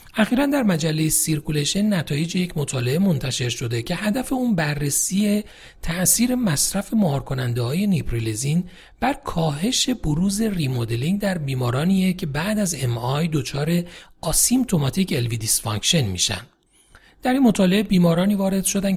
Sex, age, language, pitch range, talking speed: male, 40-59, Persian, 130-190 Hz, 125 wpm